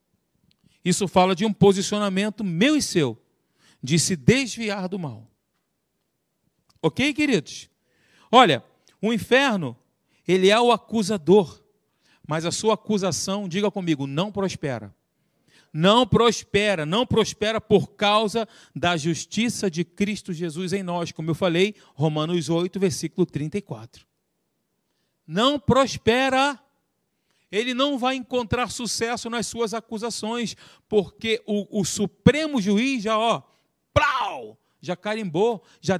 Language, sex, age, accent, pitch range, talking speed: Portuguese, male, 40-59, Brazilian, 175-230 Hz, 115 wpm